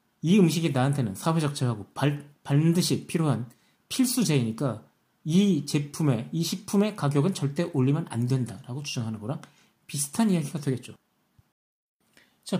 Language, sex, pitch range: Korean, male, 135-185 Hz